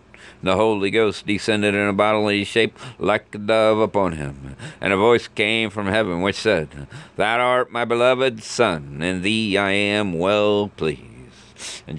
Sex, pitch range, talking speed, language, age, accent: male, 75-100 Hz, 170 wpm, English, 50-69, American